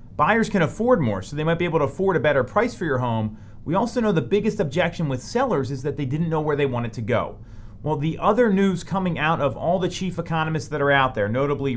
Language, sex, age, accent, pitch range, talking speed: English, male, 30-49, American, 120-170 Hz, 260 wpm